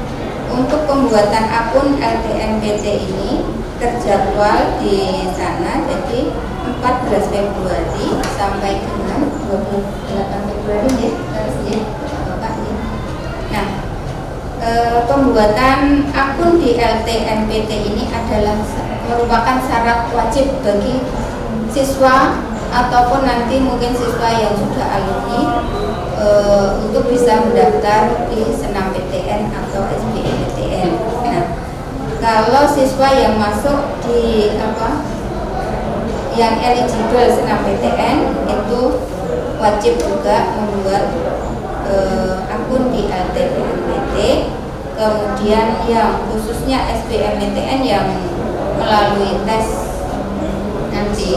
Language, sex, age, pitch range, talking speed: Indonesian, female, 20-39, 210-255 Hz, 80 wpm